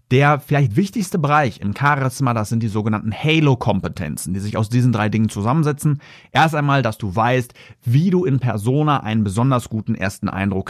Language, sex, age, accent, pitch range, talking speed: German, male, 30-49, German, 110-140 Hz, 180 wpm